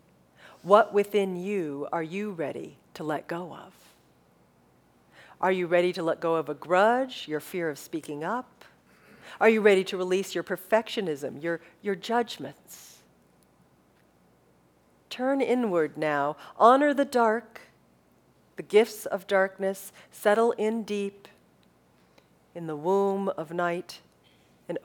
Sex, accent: female, American